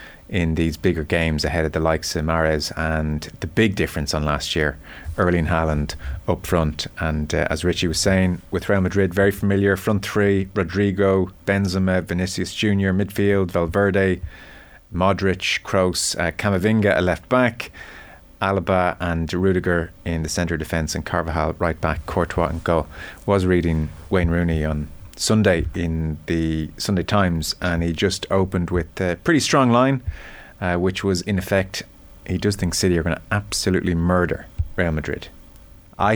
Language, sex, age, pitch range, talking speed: English, male, 30-49, 80-100 Hz, 165 wpm